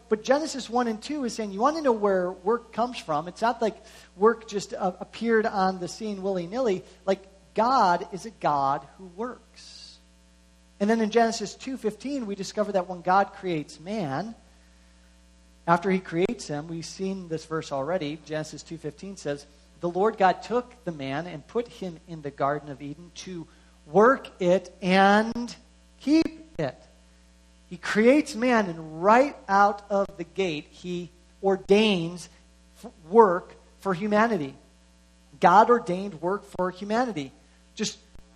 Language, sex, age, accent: English, male, 40-59, American